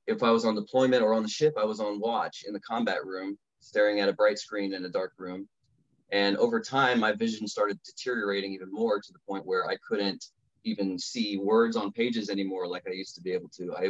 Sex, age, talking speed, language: male, 30-49, 240 wpm, English